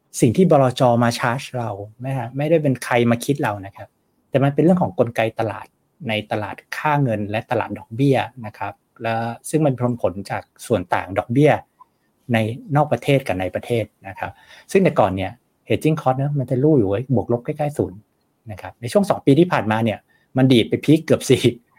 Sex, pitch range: male, 110-140 Hz